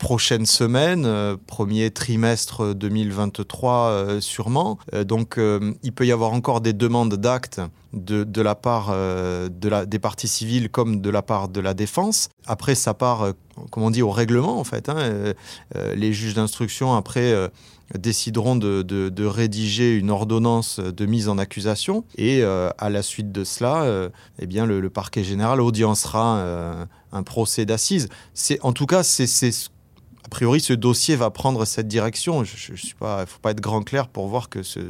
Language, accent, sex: French, French, male